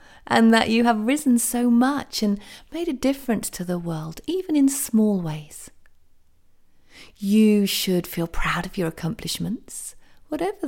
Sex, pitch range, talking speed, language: female, 160-220 Hz, 145 wpm, English